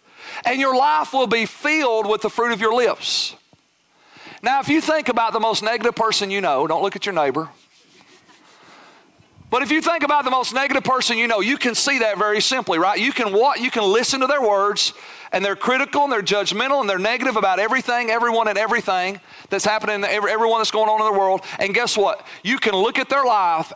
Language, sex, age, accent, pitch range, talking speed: English, male, 40-59, American, 200-265 Hz, 225 wpm